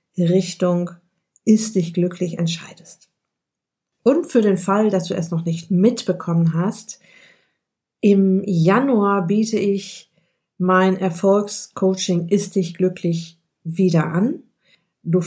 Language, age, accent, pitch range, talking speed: German, 50-69, German, 180-205 Hz, 110 wpm